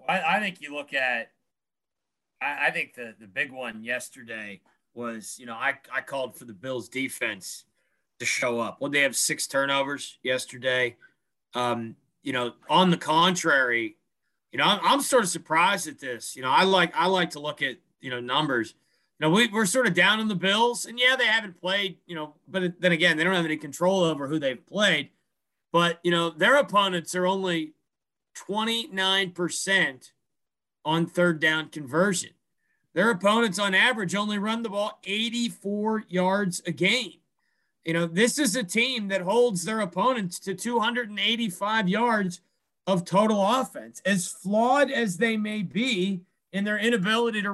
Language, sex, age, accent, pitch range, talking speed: English, male, 30-49, American, 170-235 Hz, 175 wpm